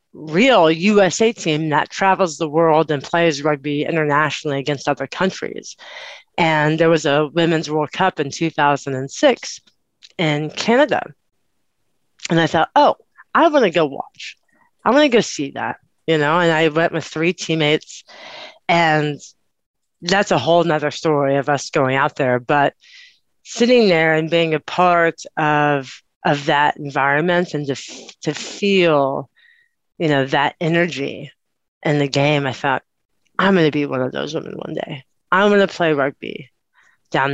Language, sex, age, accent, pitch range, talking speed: English, female, 40-59, American, 140-170 Hz, 160 wpm